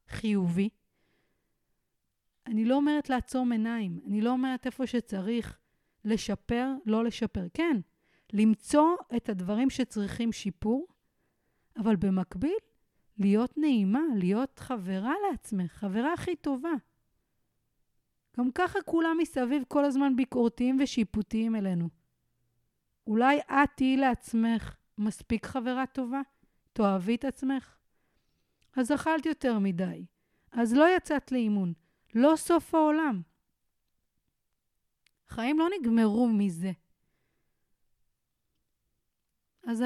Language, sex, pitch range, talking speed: Hebrew, female, 205-275 Hz, 100 wpm